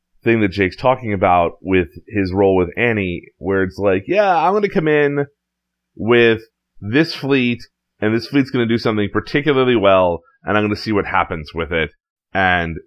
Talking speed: 175 wpm